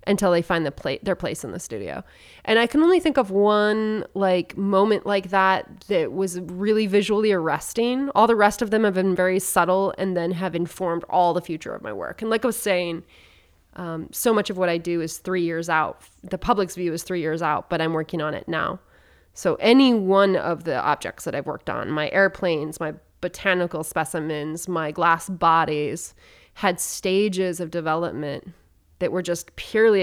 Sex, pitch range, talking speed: female, 165-195 Hz, 200 wpm